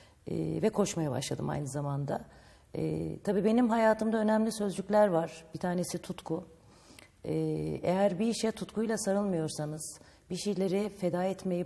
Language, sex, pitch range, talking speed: Turkish, female, 150-195 Hz, 135 wpm